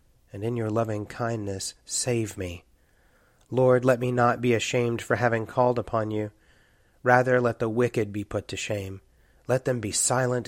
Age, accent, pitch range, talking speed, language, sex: 30-49, American, 100-125 Hz, 170 wpm, English, male